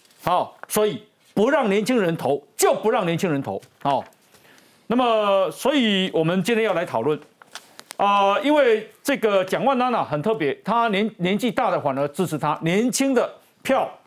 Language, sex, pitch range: Chinese, male, 170-250 Hz